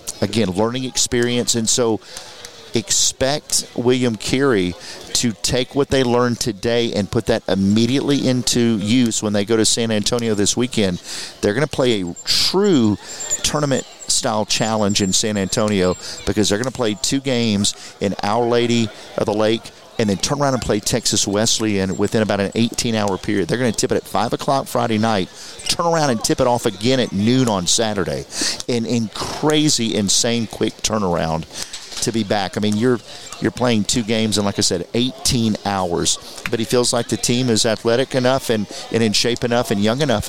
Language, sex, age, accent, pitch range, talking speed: English, male, 40-59, American, 105-125 Hz, 190 wpm